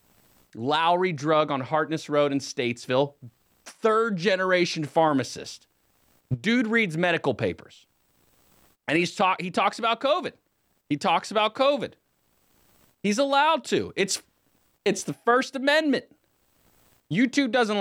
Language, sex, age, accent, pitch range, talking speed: English, male, 30-49, American, 120-185 Hz, 120 wpm